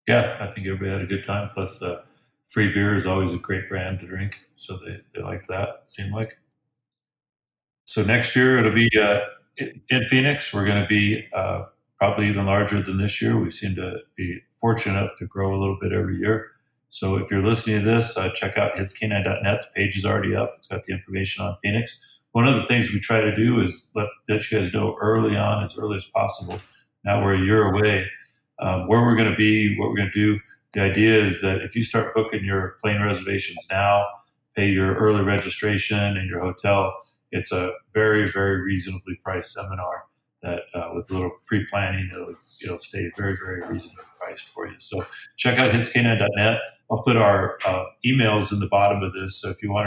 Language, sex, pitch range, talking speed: English, male, 95-110 Hz, 210 wpm